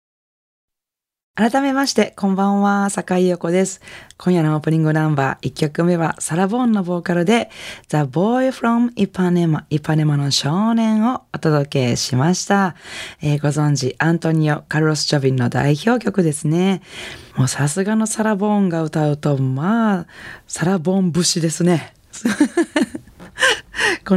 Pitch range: 145-190 Hz